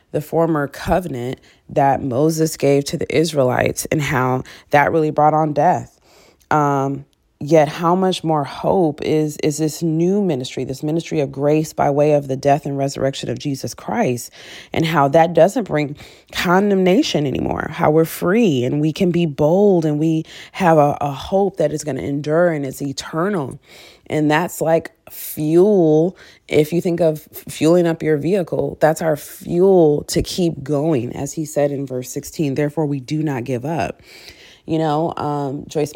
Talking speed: 175 wpm